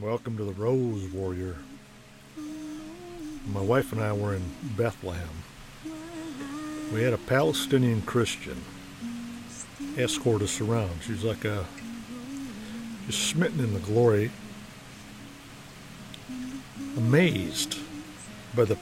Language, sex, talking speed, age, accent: English, male, 100 wpm, 60-79, American